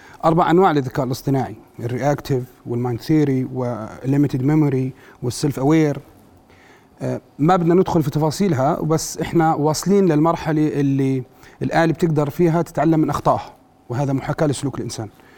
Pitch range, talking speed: 135-165 Hz, 125 wpm